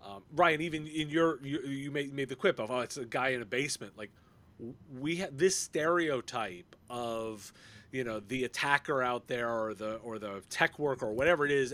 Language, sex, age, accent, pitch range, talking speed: English, male, 30-49, American, 115-150 Hz, 215 wpm